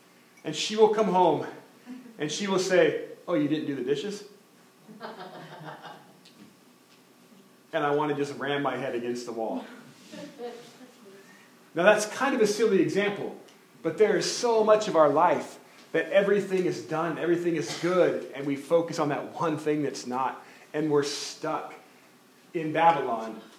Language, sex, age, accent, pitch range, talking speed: English, male, 30-49, American, 150-205 Hz, 160 wpm